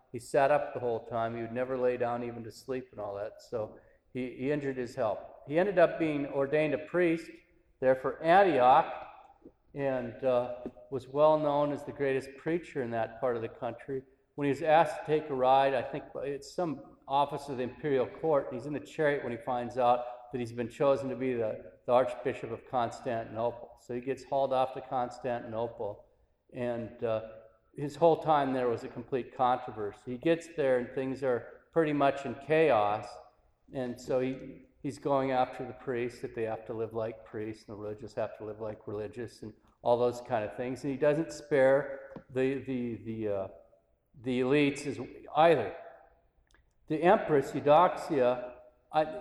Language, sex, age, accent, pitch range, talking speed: English, male, 40-59, American, 120-145 Hz, 190 wpm